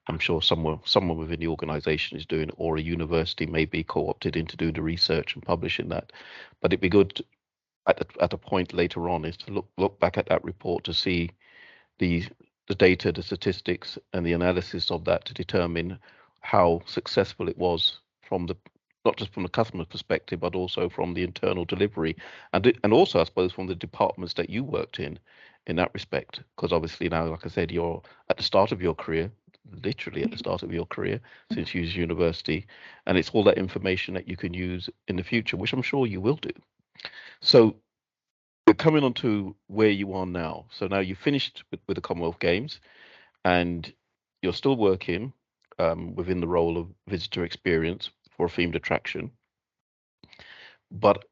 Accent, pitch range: British, 85-100 Hz